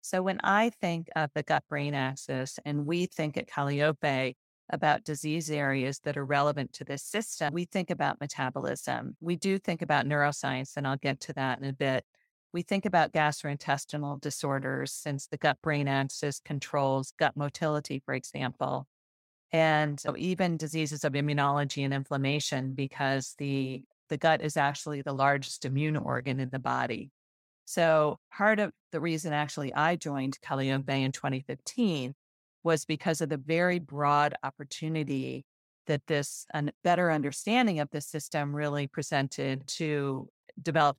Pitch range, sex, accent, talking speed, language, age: 135-160 Hz, female, American, 150 wpm, English, 40-59